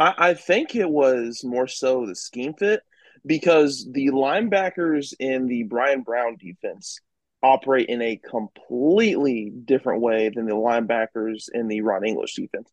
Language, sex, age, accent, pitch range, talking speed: English, male, 20-39, American, 125-140 Hz, 145 wpm